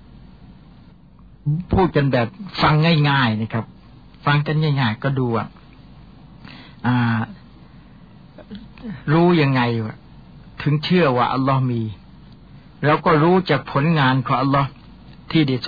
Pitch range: 135-155 Hz